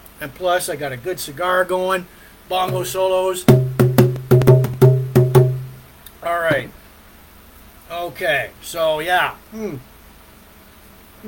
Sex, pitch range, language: male, 115-170 Hz, English